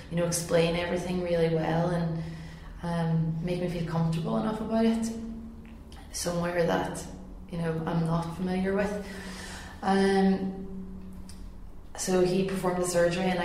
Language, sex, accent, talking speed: English, female, Irish, 135 wpm